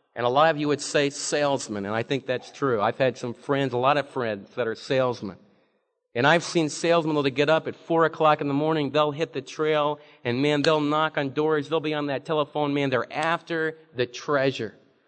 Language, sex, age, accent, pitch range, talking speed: English, male, 40-59, American, 135-165 Hz, 225 wpm